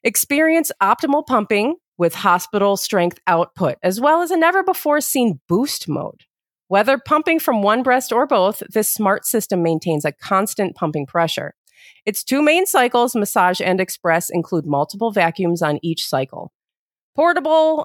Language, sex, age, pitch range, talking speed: English, female, 40-59, 180-275 Hz, 145 wpm